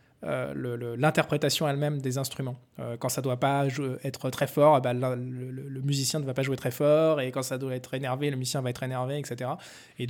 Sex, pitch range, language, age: male, 130-150 Hz, French, 20-39